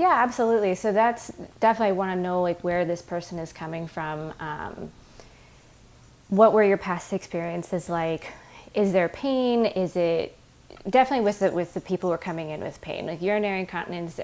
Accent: American